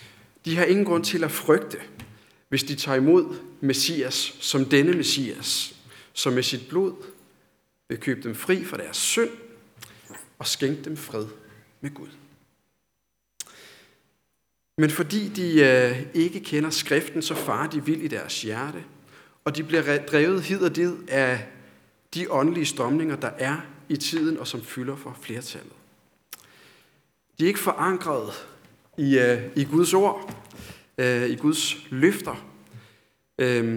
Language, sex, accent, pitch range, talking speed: Danish, male, native, 125-165 Hz, 140 wpm